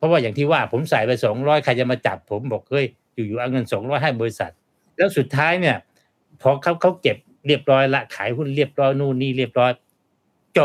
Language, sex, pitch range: Thai, male, 120-160 Hz